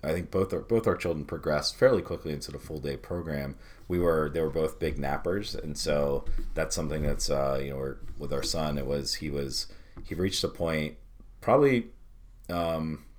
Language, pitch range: English, 70-85 Hz